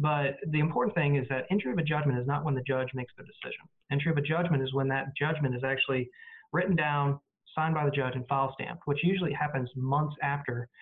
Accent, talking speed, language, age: American, 235 wpm, English, 30-49